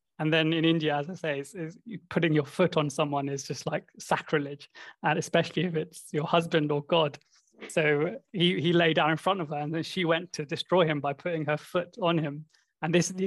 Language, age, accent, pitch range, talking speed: English, 20-39, British, 150-170 Hz, 235 wpm